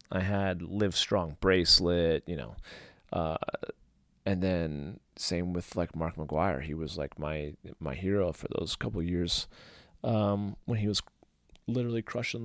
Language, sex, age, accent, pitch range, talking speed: English, male, 30-49, American, 85-115 Hz, 155 wpm